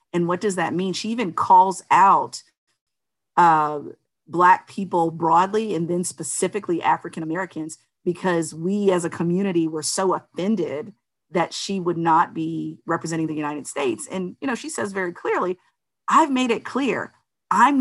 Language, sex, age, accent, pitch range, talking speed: English, female, 40-59, American, 170-200 Hz, 155 wpm